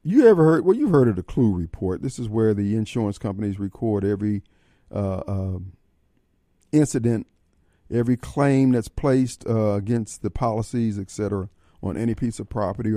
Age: 50-69